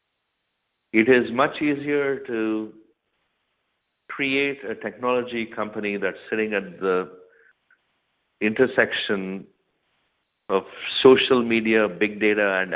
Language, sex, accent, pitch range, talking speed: English, male, Indian, 100-115 Hz, 95 wpm